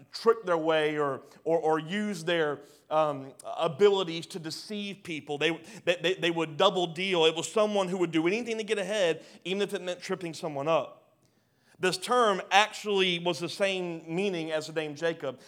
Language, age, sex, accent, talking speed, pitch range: English, 30-49, male, American, 180 wpm, 155-210 Hz